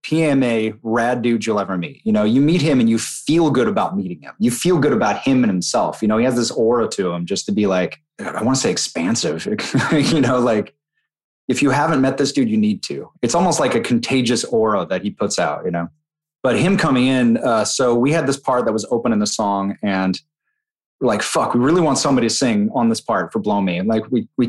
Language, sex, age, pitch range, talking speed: English, male, 30-49, 110-150 Hz, 250 wpm